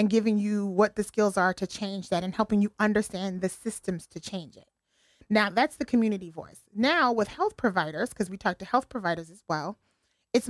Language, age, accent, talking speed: English, 30-49, American, 210 wpm